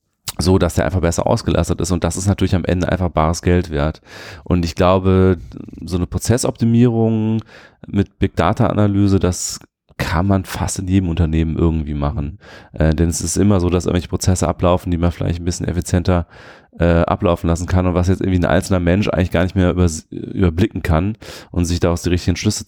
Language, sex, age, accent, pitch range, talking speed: German, male, 30-49, German, 85-95 Hz, 200 wpm